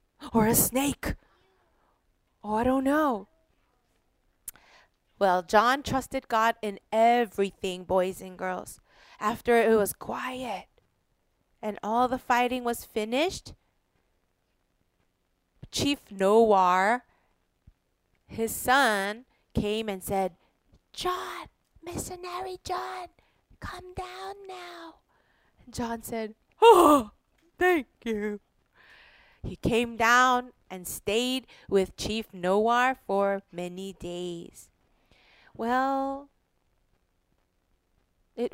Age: 30-49